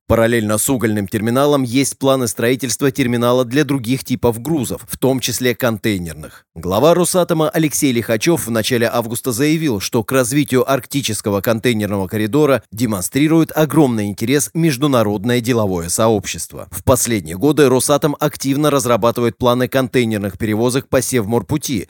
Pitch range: 115-145 Hz